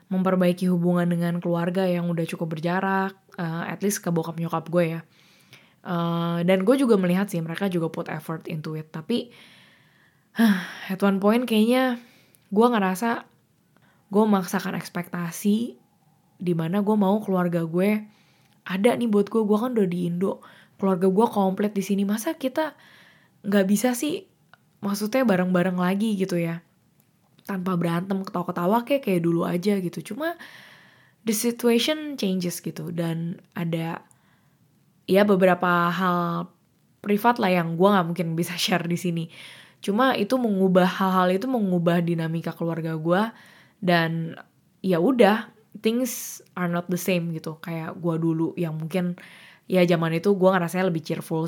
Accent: native